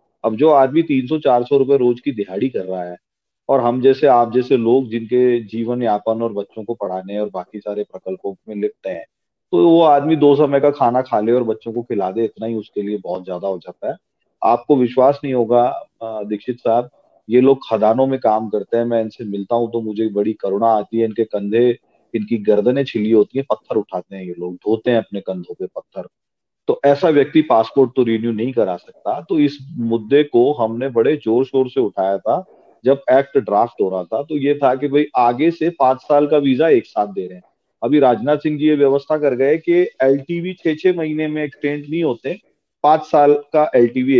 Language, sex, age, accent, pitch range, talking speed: English, male, 40-59, Indian, 110-145 Hz, 165 wpm